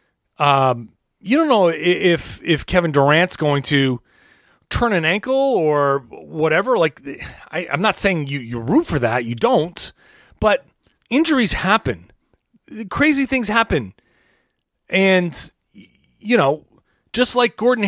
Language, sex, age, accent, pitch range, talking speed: English, male, 30-49, American, 150-215 Hz, 130 wpm